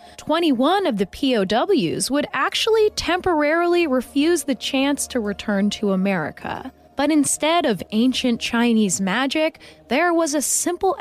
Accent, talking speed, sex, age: American, 130 wpm, female, 20-39